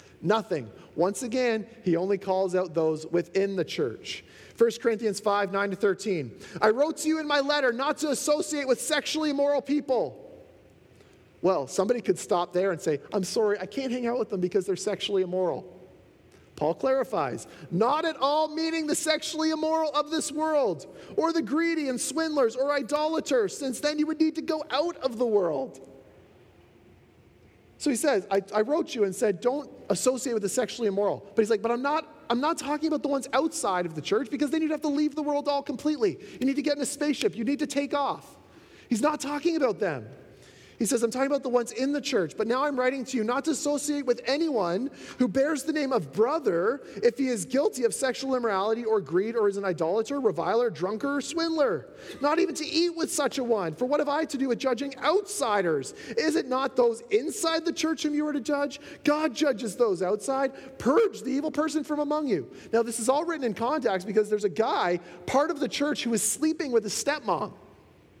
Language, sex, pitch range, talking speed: English, male, 225-300 Hz, 210 wpm